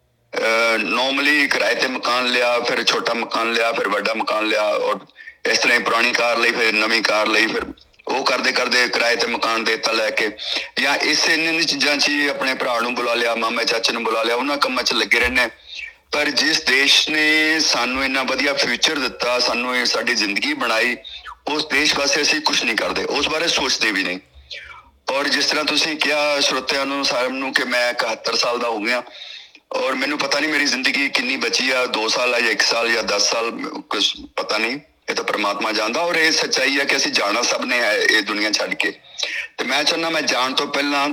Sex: male